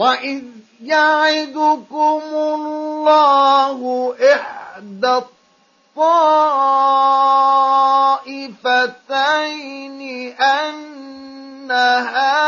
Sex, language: male, Arabic